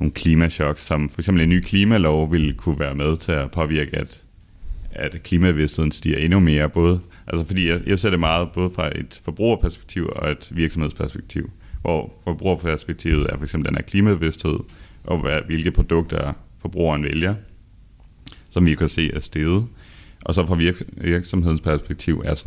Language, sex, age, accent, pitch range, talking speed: Danish, male, 30-49, native, 75-90 Hz, 165 wpm